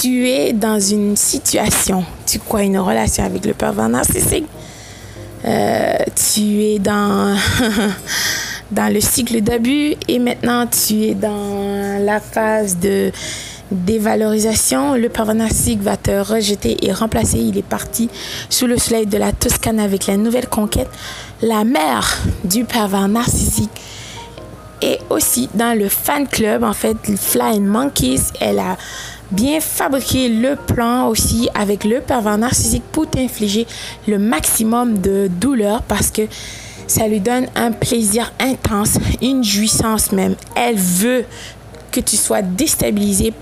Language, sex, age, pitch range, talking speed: French, female, 20-39, 200-240 Hz, 140 wpm